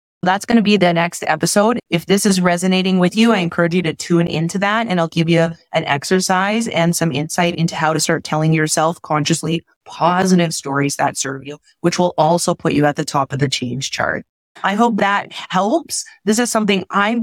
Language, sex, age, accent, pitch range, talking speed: English, female, 30-49, American, 170-220 Hz, 215 wpm